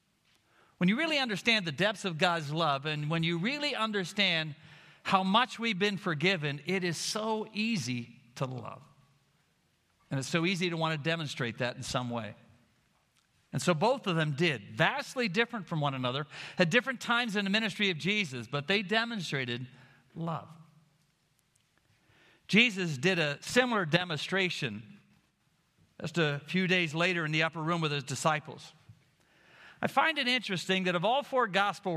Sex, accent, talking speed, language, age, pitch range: male, American, 160 wpm, English, 50-69, 155-205 Hz